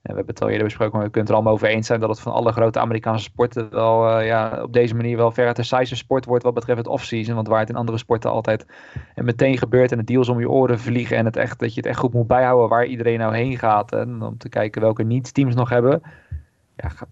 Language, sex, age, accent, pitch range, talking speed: Dutch, male, 20-39, Dutch, 110-125 Hz, 285 wpm